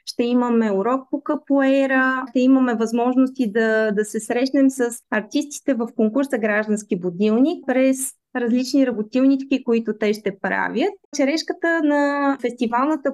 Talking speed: 130 wpm